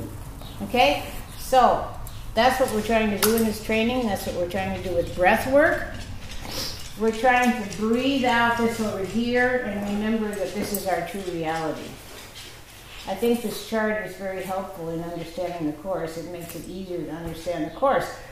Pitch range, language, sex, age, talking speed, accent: 175-245 Hz, English, female, 60-79, 180 wpm, American